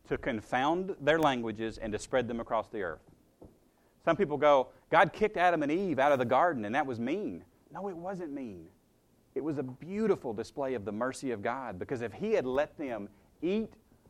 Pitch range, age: 110-160 Hz, 40-59